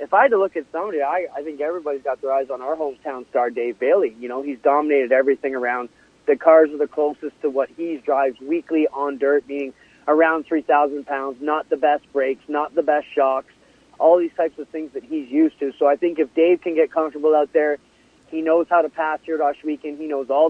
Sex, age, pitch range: male, 30-49, 145-170 Hz